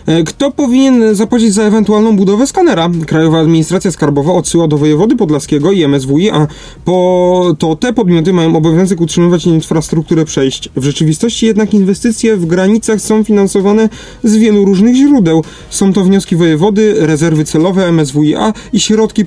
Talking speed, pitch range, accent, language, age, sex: 145 wpm, 165-210 Hz, native, Polish, 30-49, male